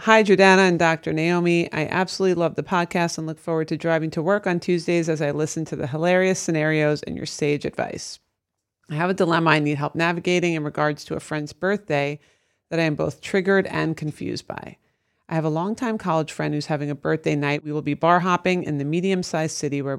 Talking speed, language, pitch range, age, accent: 220 wpm, English, 150-180 Hz, 30-49, American